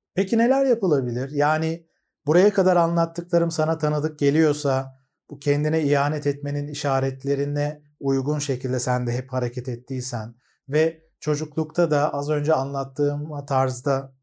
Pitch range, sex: 135-175 Hz, male